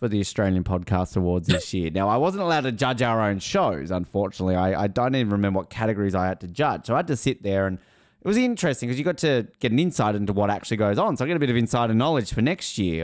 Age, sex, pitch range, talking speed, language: 30-49, male, 100-165 Hz, 280 wpm, English